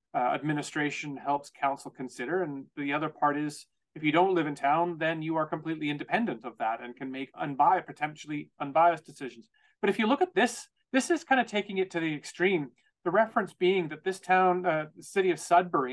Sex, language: male, English